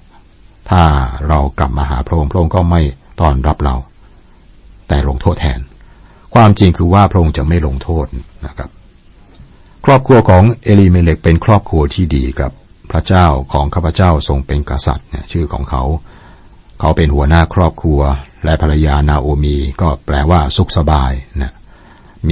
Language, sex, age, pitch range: Thai, male, 60-79, 70-90 Hz